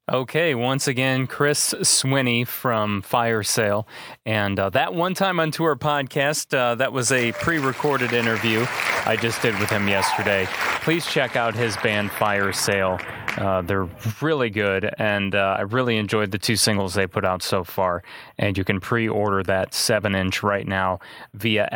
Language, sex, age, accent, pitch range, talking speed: English, male, 30-49, American, 100-135 Hz, 170 wpm